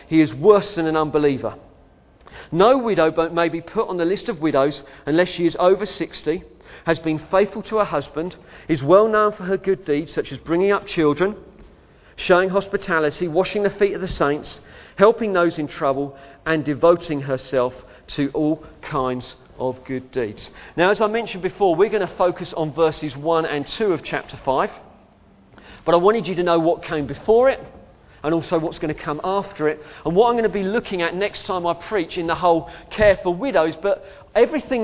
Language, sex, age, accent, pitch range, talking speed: English, male, 40-59, British, 150-195 Hz, 200 wpm